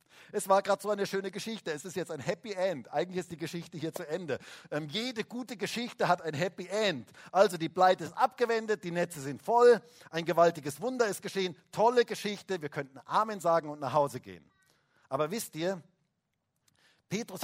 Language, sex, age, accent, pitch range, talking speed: German, male, 50-69, German, 145-205 Hz, 195 wpm